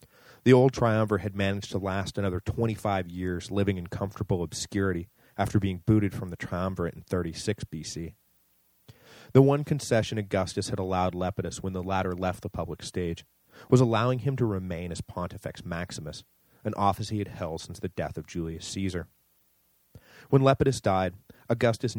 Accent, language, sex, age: American, English, male, 30-49